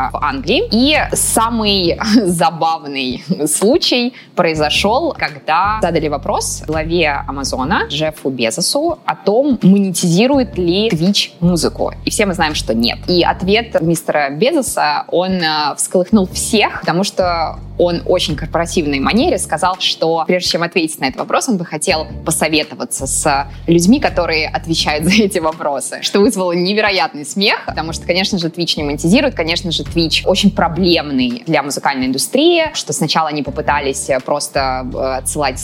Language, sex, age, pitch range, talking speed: Russian, female, 20-39, 155-200 Hz, 140 wpm